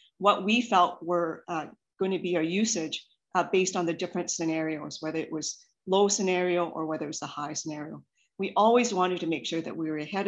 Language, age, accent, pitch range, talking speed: English, 40-59, American, 160-195 Hz, 215 wpm